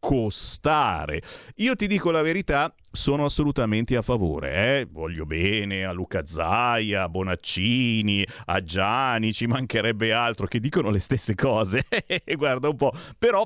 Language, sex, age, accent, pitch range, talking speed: Italian, male, 40-59, native, 110-180 Hz, 145 wpm